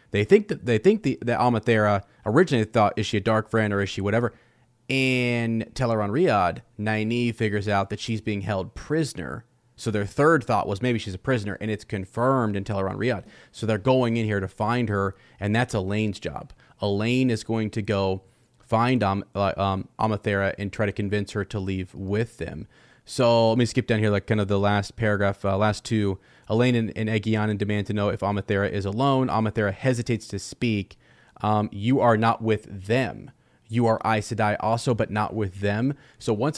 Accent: American